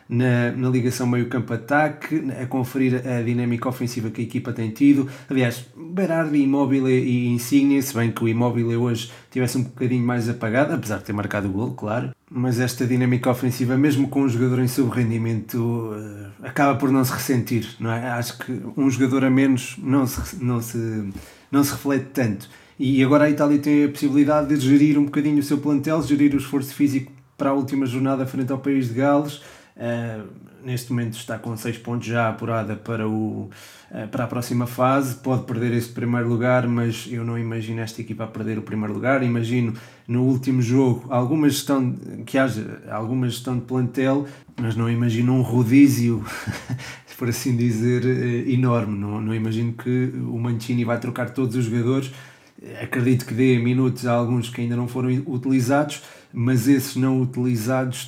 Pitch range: 120-135 Hz